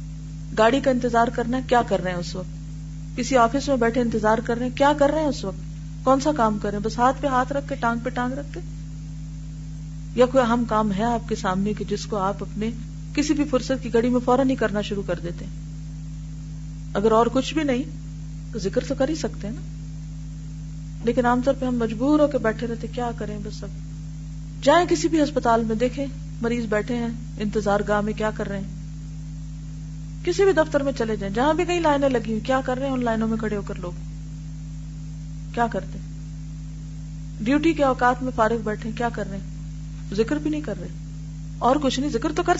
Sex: female